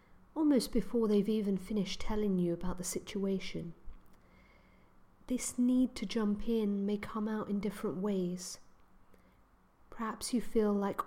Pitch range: 185-230 Hz